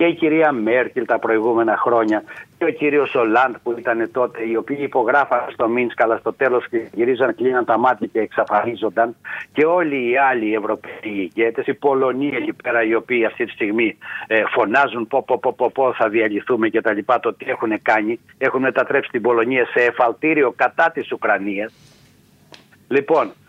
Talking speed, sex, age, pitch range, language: 175 wpm, male, 60-79, 120-170 Hz, Greek